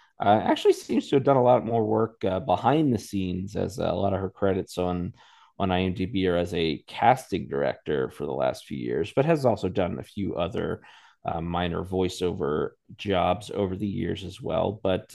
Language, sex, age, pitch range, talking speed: English, male, 30-49, 95-110 Hz, 200 wpm